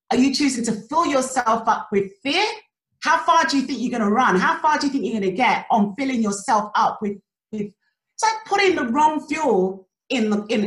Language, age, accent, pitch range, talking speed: English, 30-49, British, 210-315 Hz, 235 wpm